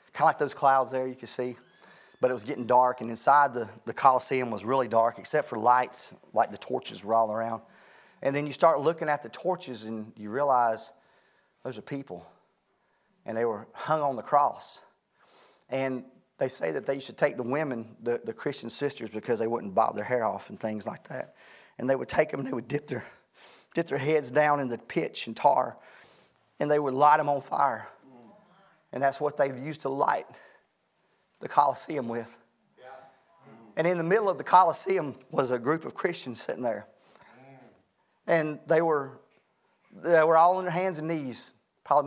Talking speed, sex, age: 200 wpm, male, 30-49